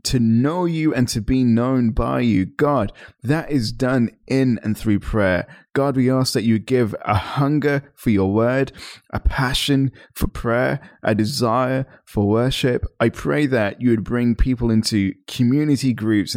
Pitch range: 105-135 Hz